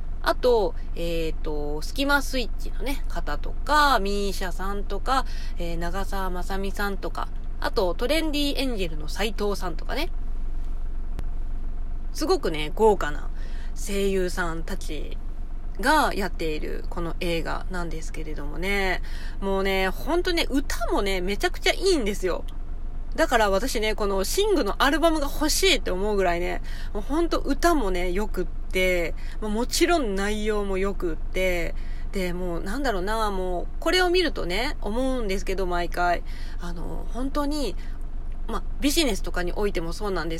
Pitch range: 180-285 Hz